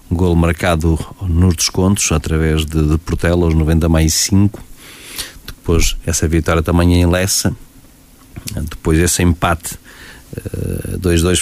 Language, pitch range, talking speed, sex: Portuguese, 80-90 Hz, 115 wpm, male